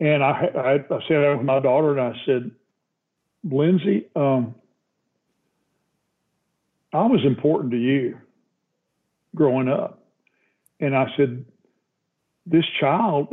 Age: 50-69